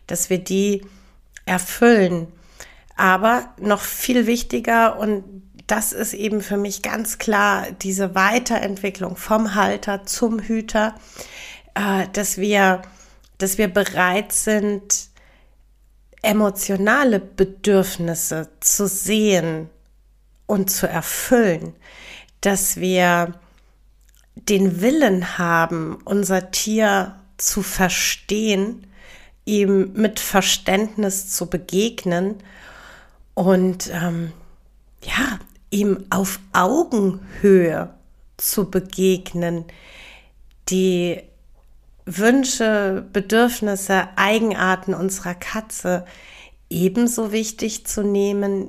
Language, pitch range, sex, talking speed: German, 185-210 Hz, female, 85 wpm